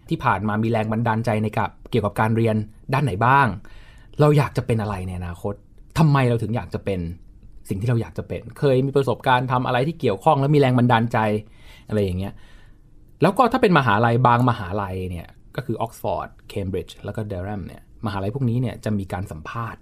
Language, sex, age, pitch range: Thai, male, 20-39, 100-125 Hz